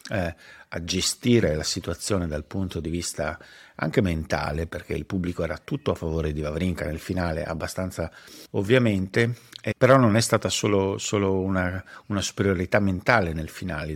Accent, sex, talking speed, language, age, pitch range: native, male, 160 wpm, Italian, 50-69, 85-105 Hz